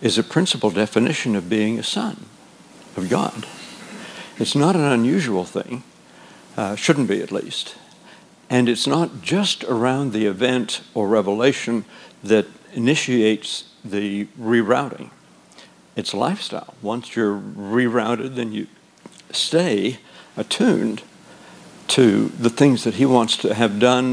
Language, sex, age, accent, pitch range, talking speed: English, male, 60-79, American, 105-125 Hz, 125 wpm